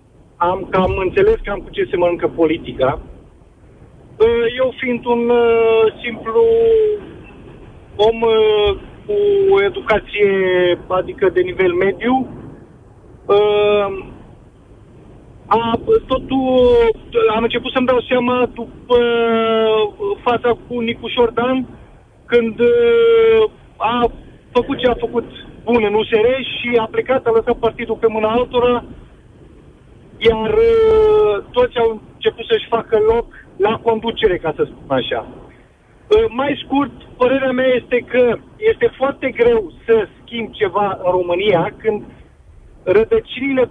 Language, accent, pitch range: Romanian, native, 215-265 Hz